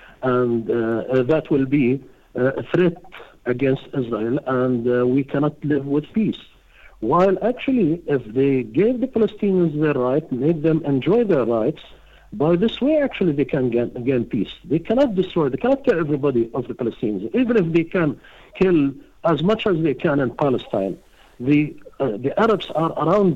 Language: English